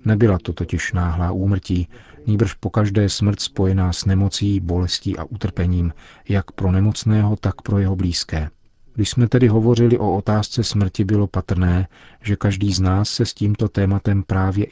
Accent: native